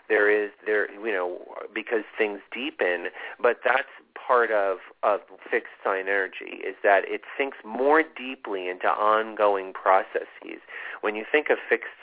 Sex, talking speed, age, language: male, 150 wpm, 40-59, English